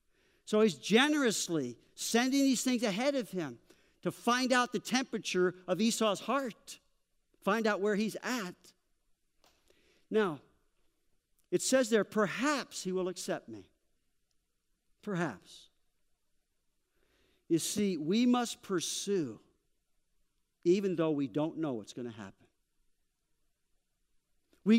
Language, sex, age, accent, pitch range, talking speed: English, male, 50-69, American, 180-245 Hz, 115 wpm